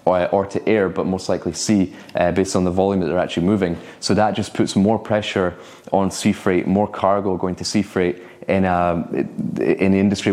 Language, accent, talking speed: English, British, 205 wpm